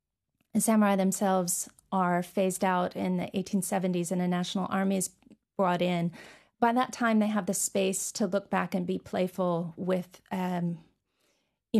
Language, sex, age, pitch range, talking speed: English, female, 30-49, 180-205 Hz, 160 wpm